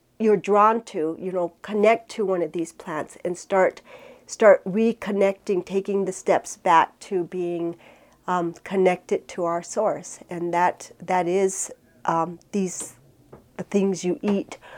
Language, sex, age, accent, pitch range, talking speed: English, female, 40-59, American, 165-190 Hz, 140 wpm